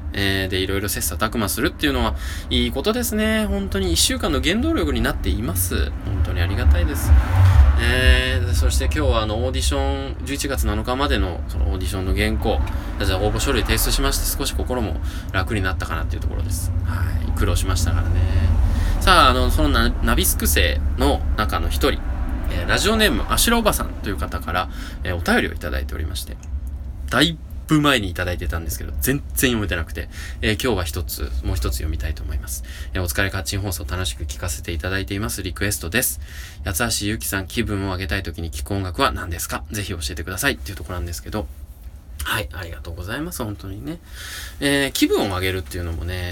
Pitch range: 75-95 Hz